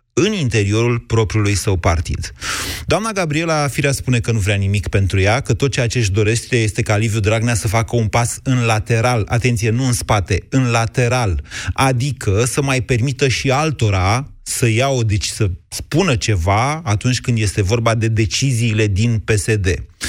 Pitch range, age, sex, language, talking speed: 105-130 Hz, 30-49, male, Romanian, 165 wpm